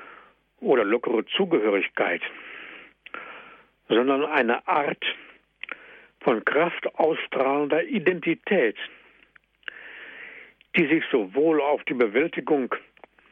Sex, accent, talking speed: male, German, 70 wpm